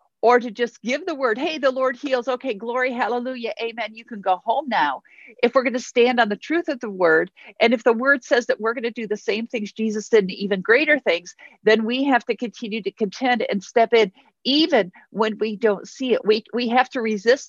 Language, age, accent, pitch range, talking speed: English, 50-69, American, 195-240 Hz, 240 wpm